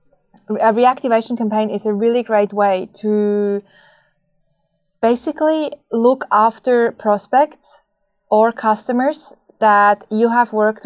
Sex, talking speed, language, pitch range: female, 105 wpm, English, 195-220 Hz